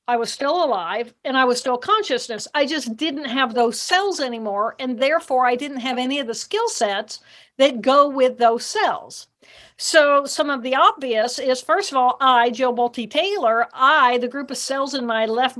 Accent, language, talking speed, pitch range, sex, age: American, English, 195 wpm, 240-290 Hz, female, 50-69